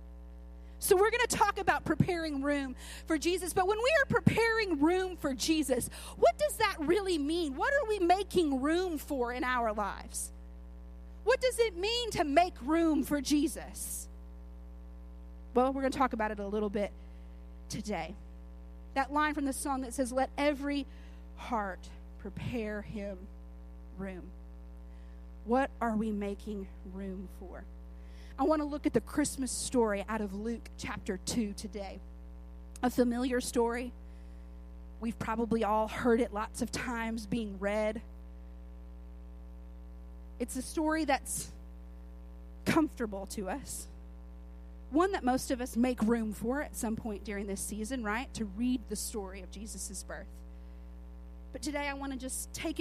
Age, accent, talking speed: 40-59, American, 150 wpm